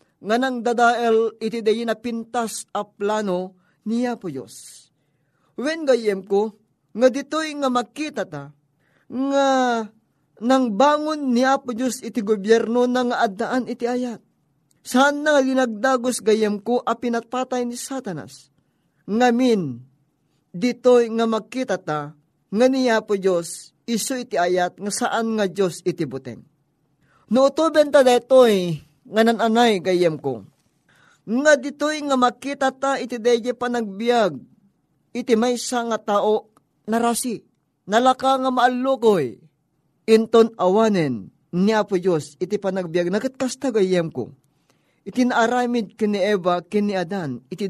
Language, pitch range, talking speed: Filipino, 175-245 Hz, 120 wpm